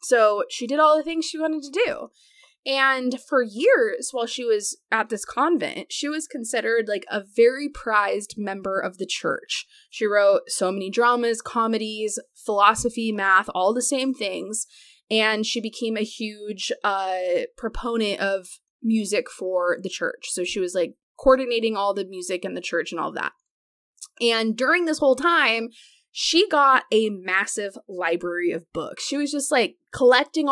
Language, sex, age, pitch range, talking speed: English, female, 20-39, 210-275 Hz, 165 wpm